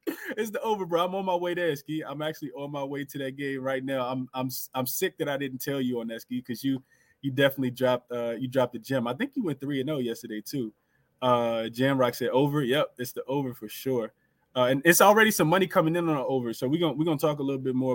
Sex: male